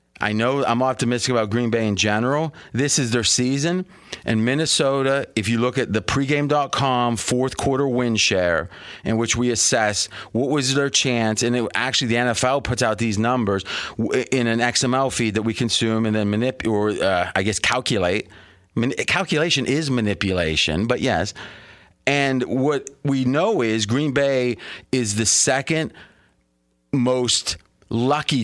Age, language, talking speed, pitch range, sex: 30-49, English, 150 wpm, 110-135 Hz, male